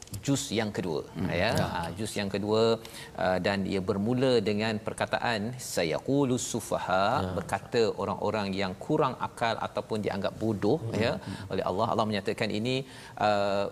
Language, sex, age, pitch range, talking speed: Malayalam, male, 40-59, 105-130 Hz, 125 wpm